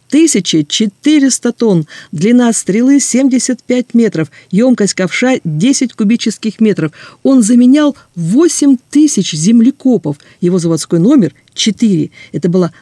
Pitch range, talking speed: 165-220 Hz, 100 wpm